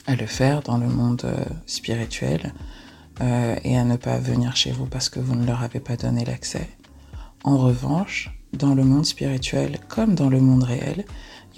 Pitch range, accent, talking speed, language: 120-140 Hz, French, 185 wpm, English